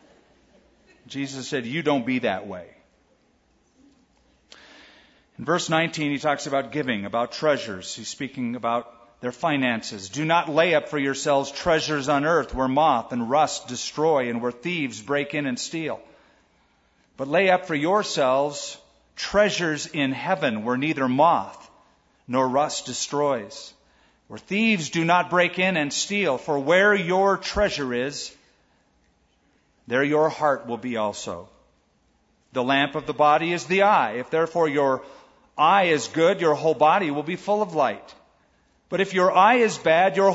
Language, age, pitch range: English, 40-59, 130-175 Hz